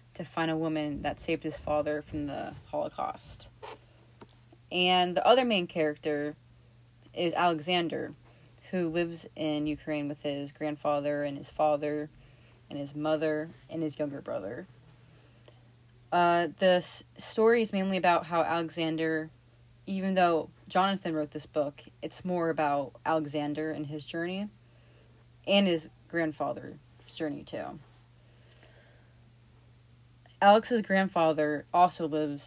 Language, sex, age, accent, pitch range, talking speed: English, female, 30-49, American, 120-175 Hz, 120 wpm